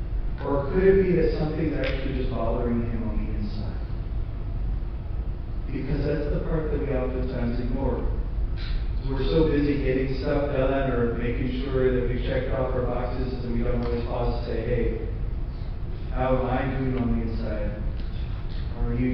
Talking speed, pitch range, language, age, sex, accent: 170 wpm, 115-155 Hz, English, 40-59, male, American